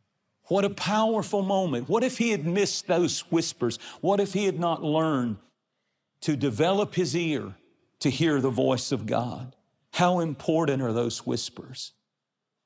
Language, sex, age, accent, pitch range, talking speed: English, male, 50-69, American, 125-160 Hz, 150 wpm